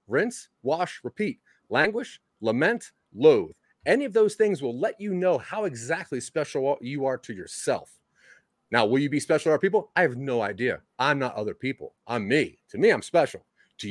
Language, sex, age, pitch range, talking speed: English, male, 30-49, 110-180 Hz, 190 wpm